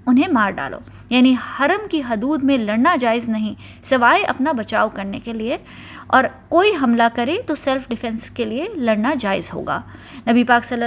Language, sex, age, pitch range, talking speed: Urdu, female, 20-39, 230-285 Hz, 175 wpm